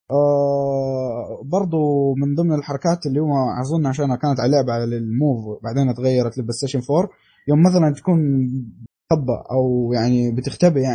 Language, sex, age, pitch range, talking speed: Arabic, male, 20-39, 135-185 Hz, 135 wpm